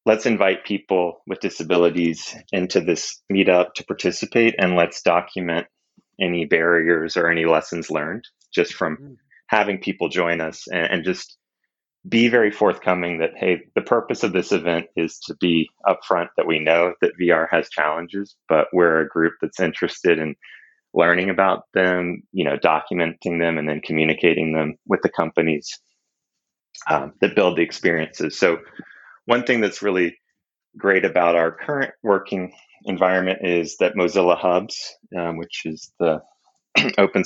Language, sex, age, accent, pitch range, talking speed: English, male, 30-49, American, 80-95 Hz, 155 wpm